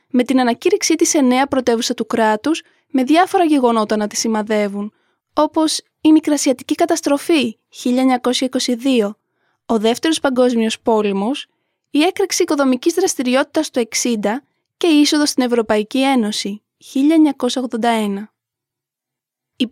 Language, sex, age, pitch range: English, female, 20-39, 225-295 Hz